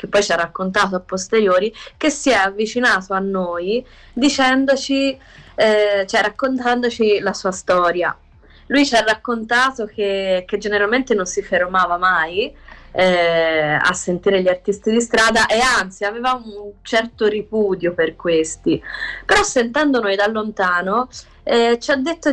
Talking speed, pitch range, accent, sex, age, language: 150 wpm, 185-245 Hz, native, female, 20-39, Italian